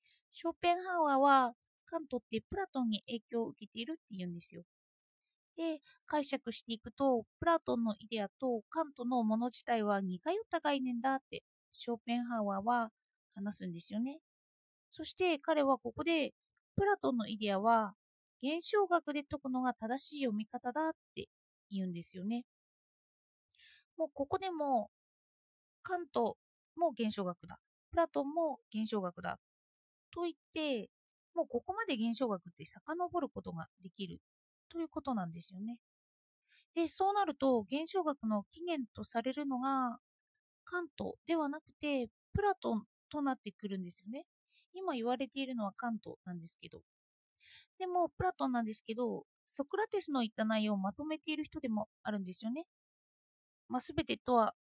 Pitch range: 220-325 Hz